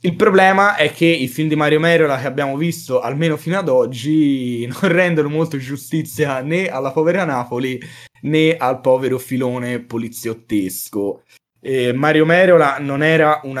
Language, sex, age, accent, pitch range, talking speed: Italian, male, 20-39, native, 115-145 Hz, 155 wpm